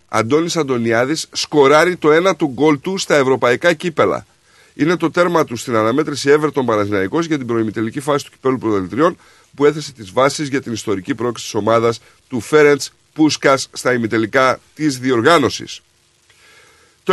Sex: male